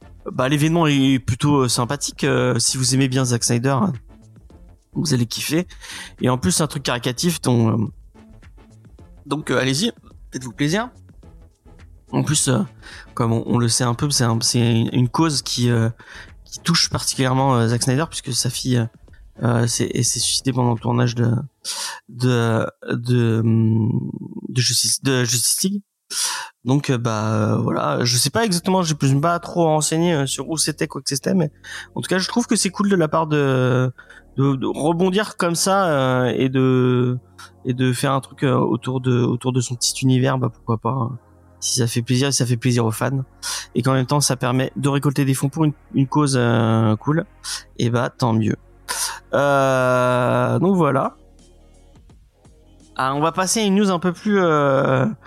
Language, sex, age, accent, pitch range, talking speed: French, male, 30-49, French, 115-145 Hz, 185 wpm